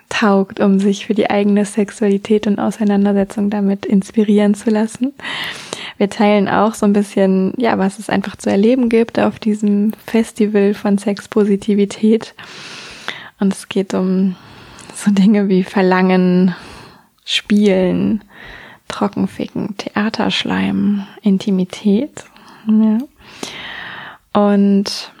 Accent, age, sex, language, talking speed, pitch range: German, 20-39, female, German, 105 wpm, 200-230 Hz